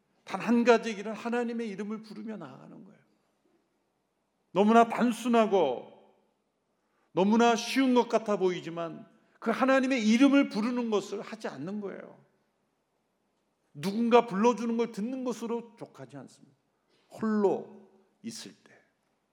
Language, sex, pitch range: Korean, male, 185-235 Hz